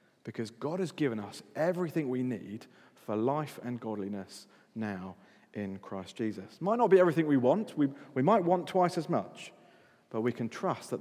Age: 40-59